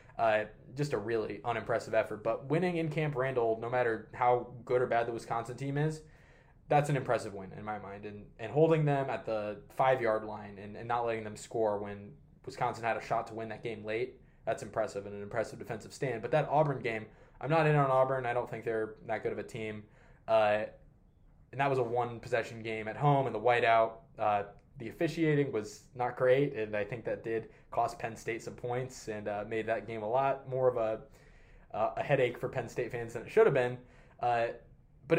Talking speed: 225 wpm